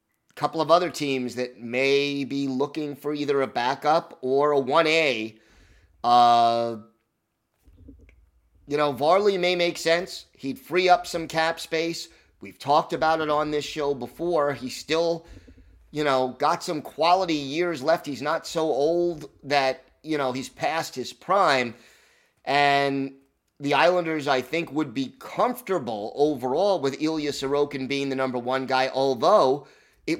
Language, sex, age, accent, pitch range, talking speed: English, male, 30-49, American, 125-155 Hz, 150 wpm